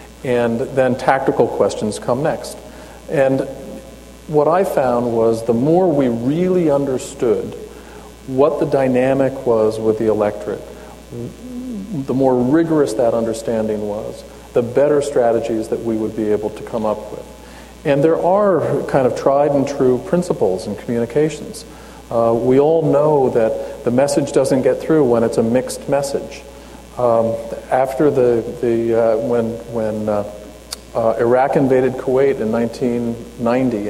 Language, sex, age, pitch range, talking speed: English, male, 40-59, 115-140 Hz, 145 wpm